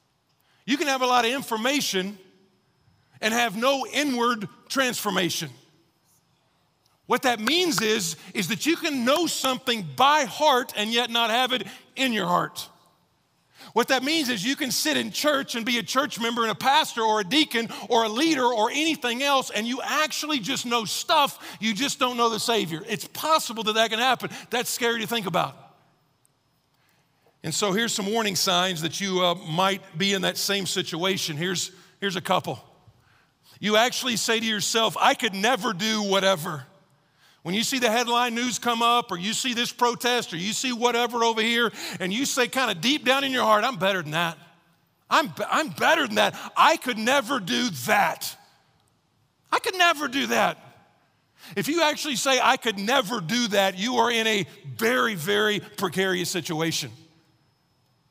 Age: 50-69